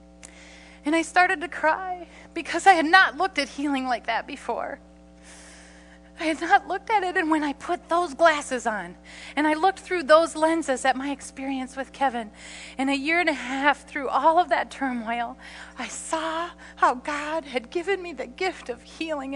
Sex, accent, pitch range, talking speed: female, American, 220-320 Hz, 190 wpm